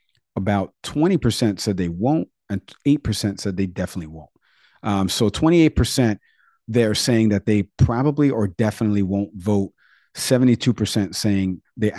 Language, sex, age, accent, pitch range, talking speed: English, male, 40-59, American, 100-120 Hz, 130 wpm